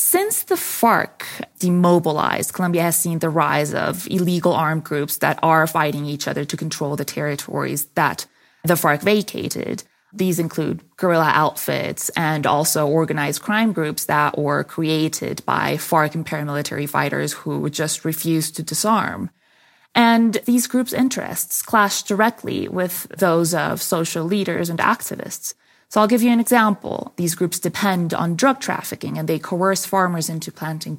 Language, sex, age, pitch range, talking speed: English, female, 20-39, 160-210 Hz, 155 wpm